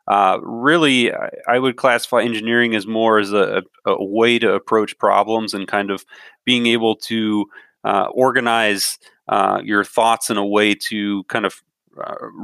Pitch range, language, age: 100-120 Hz, English, 30-49